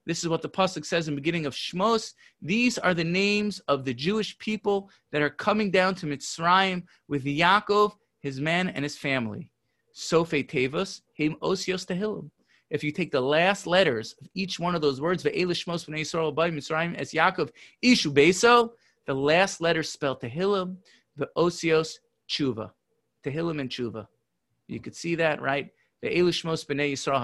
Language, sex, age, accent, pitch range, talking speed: English, male, 30-49, American, 145-190 Hz, 150 wpm